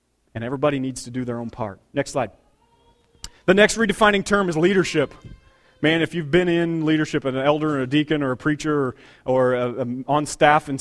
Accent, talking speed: American, 205 wpm